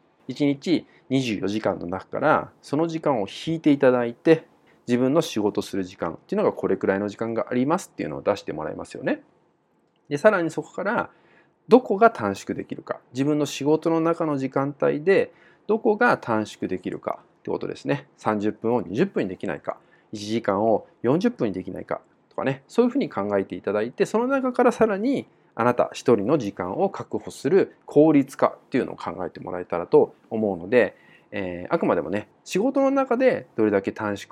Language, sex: Japanese, male